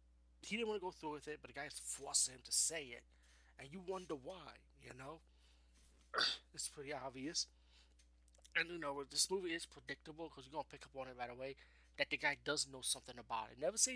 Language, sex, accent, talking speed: English, male, American, 230 wpm